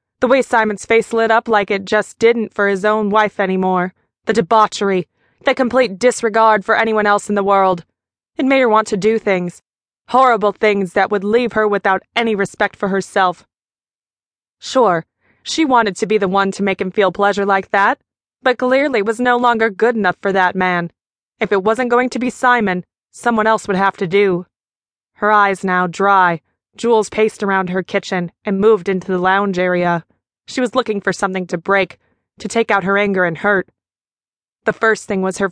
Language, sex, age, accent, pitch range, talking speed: English, female, 20-39, American, 190-220 Hz, 195 wpm